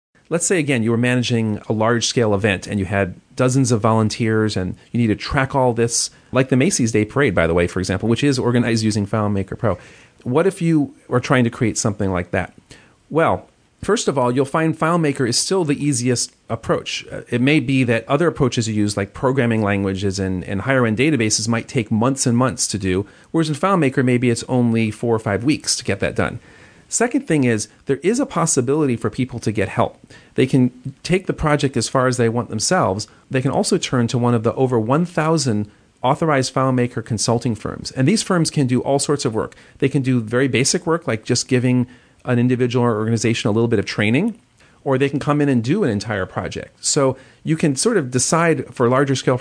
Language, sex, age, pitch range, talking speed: English, male, 40-59, 110-140 Hz, 220 wpm